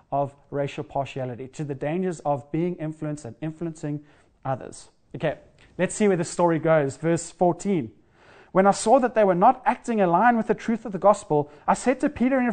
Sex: male